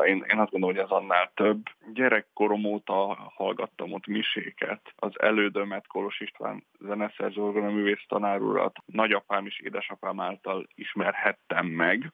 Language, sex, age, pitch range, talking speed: Hungarian, male, 20-39, 100-110 Hz, 130 wpm